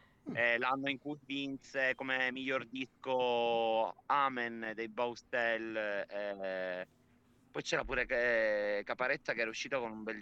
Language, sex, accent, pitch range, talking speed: Italian, male, native, 115-135 Hz, 130 wpm